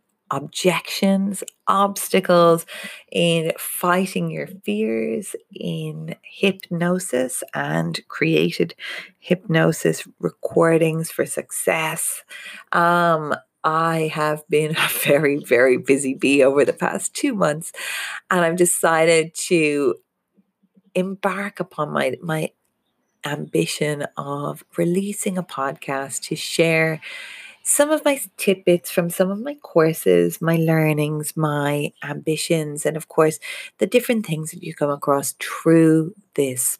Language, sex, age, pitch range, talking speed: English, female, 40-59, 150-195 Hz, 110 wpm